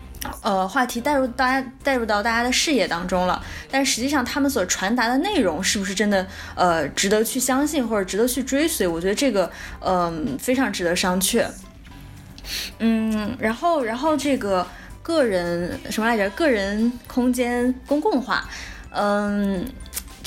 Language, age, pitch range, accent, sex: Chinese, 10-29, 200-275 Hz, native, female